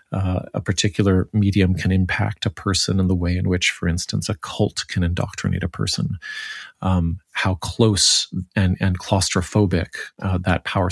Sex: male